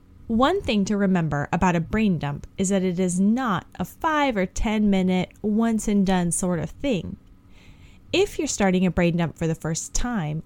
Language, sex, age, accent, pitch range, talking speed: English, female, 10-29, American, 175-240 Hz, 195 wpm